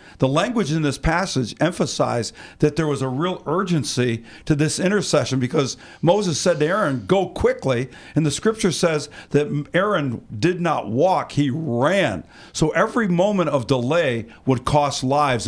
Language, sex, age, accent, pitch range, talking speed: English, male, 50-69, American, 125-165 Hz, 160 wpm